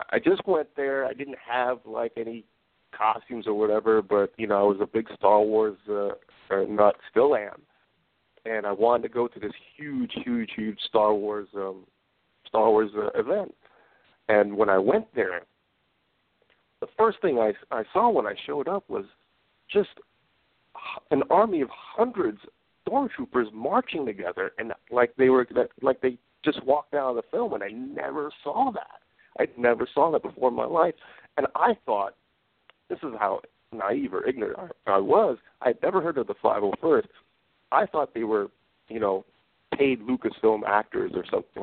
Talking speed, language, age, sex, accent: 175 wpm, English, 50-69, male, American